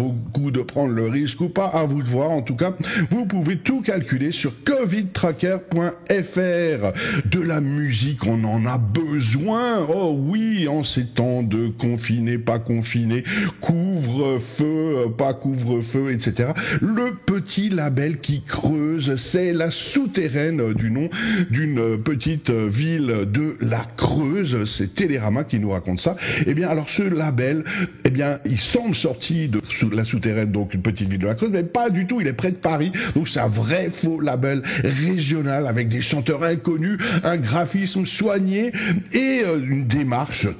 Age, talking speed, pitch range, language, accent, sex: 50-69, 165 wpm, 130-185 Hz, French, French, male